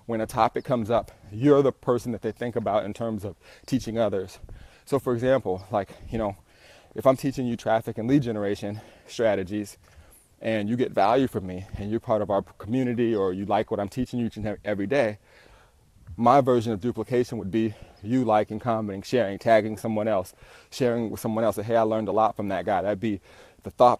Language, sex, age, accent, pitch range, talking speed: English, male, 30-49, American, 105-120 Hz, 210 wpm